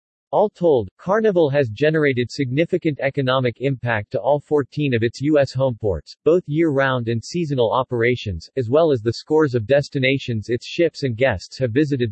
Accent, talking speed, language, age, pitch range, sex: American, 165 wpm, English, 40-59, 120-150 Hz, male